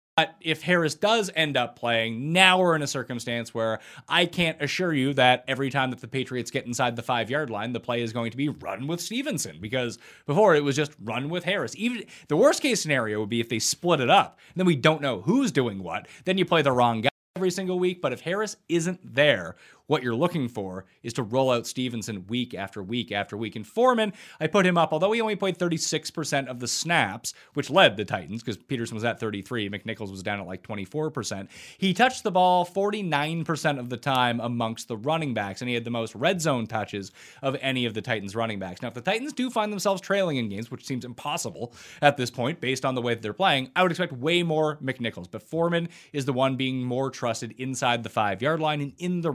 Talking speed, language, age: 235 wpm, English, 30-49